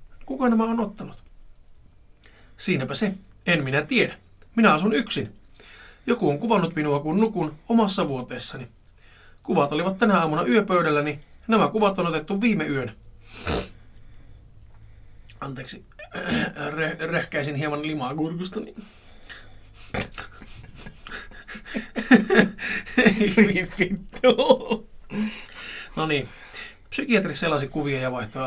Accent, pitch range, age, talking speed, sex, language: native, 140-215 Hz, 30-49, 95 wpm, male, Finnish